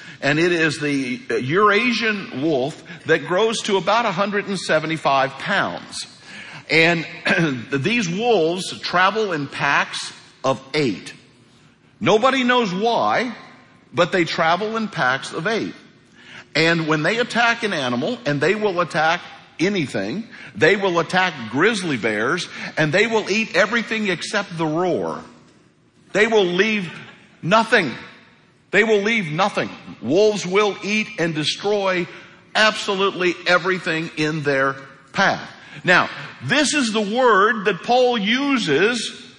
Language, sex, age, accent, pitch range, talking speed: English, male, 50-69, American, 160-215 Hz, 120 wpm